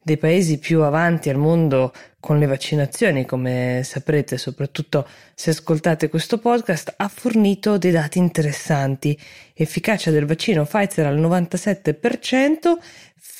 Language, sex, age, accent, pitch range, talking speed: Italian, female, 20-39, native, 145-190 Hz, 120 wpm